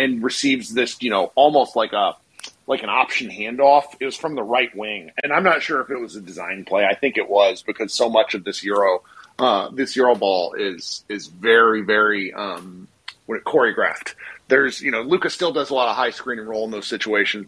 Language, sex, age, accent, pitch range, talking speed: English, male, 40-59, American, 125-205 Hz, 220 wpm